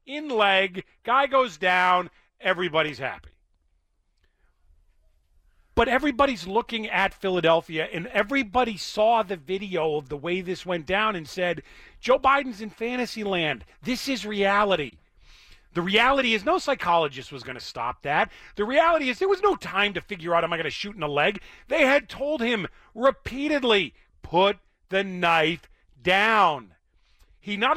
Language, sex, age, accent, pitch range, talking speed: English, male, 40-59, American, 175-265 Hz, 160 wpm